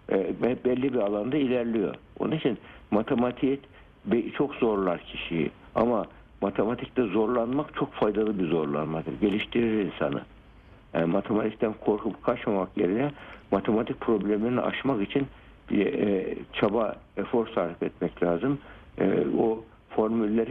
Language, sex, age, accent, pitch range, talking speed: Turkish, male, 60-79, native, 100-120 Hz, 100 wpm